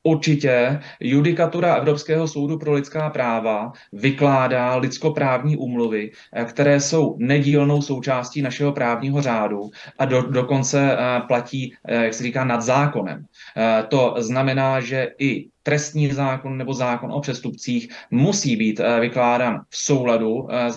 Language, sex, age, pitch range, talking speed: Czech, male, 20-39, 115-140 Hz, 120 wpm